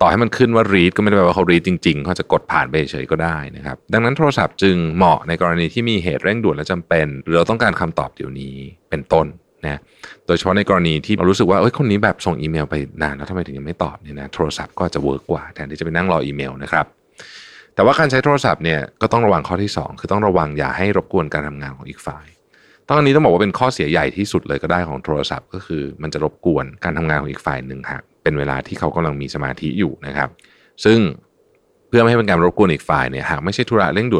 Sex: male